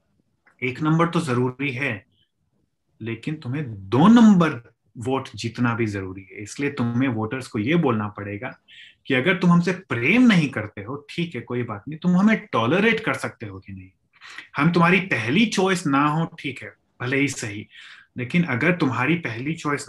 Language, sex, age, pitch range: Hindi, male, 30-49, 115-170 Hz